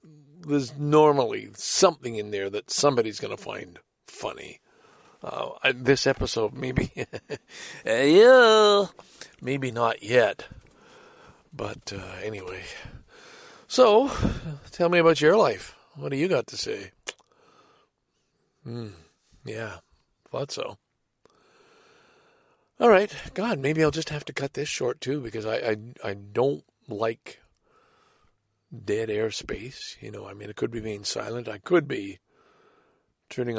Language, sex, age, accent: English, male, 50-69, American